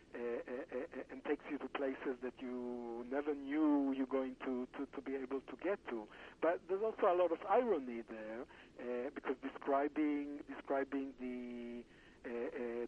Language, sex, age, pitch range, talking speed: English, male, 60-79, 125-150 Hz, 170 wpm